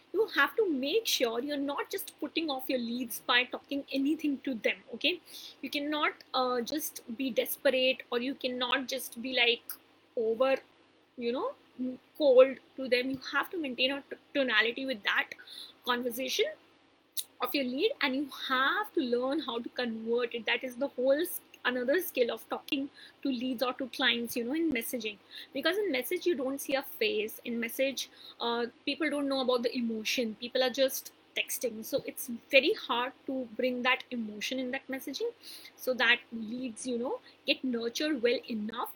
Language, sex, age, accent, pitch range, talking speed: English, female, 20-39, Indian, 245-295 Hz, 175 wpm